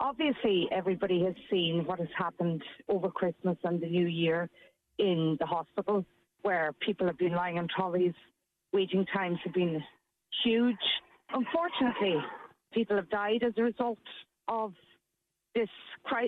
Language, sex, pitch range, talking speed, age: English, female, 180-225 Hz, 135 wpm, 40-59